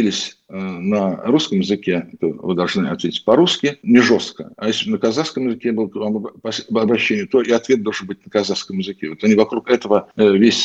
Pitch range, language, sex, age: 100-130 Hz, Russian, male, 50-69